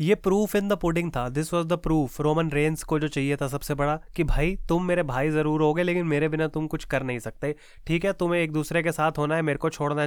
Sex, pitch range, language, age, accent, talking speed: male, 150-180 Hz, Hindi, 30-49, native, 270 wpm